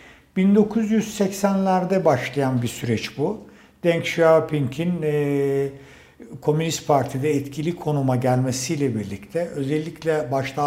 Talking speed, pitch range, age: 90 wpm, 130-170 Hz, 60-79